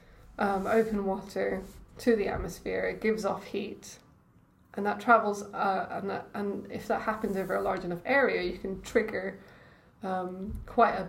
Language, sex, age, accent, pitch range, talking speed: English, female, 20-39, British, 195-225 Hz, 160 wpm